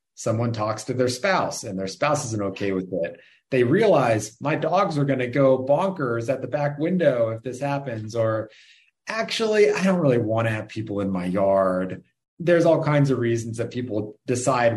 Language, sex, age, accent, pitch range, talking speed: English, male, 30-49, American, 105-140 Hz, 195 wpm